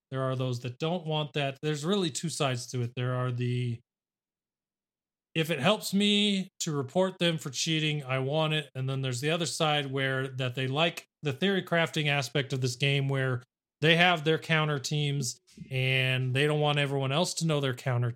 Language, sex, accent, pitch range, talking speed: English, male, American, 125-165 Hz, 200 wpm